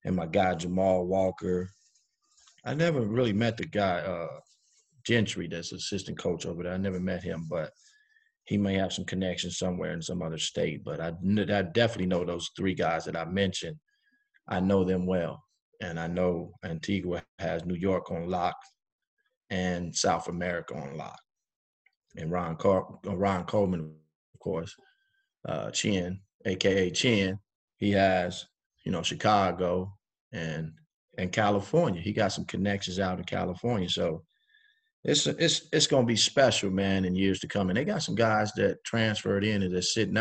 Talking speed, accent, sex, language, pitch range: 165 wpm, American, male, English, 90-115 Hz